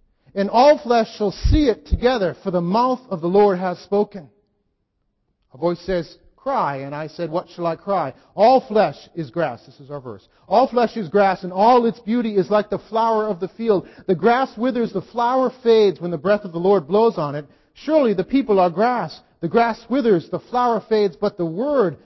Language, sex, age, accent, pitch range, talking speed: English, male, 40-59, American, 190-245 Hz, 210 wpm